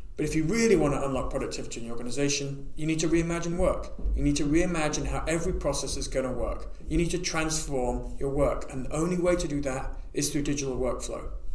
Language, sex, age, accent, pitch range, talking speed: English, male, 40-59, British, 140-175 Hz, 230 wpm